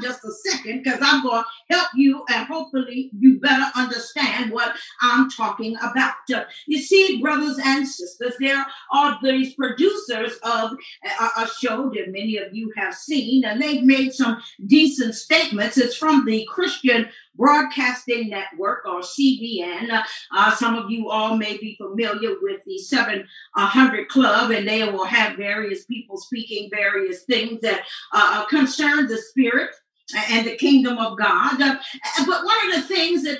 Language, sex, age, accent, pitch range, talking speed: English, female, 40-59, American, 230-290 Hz, 160 wpm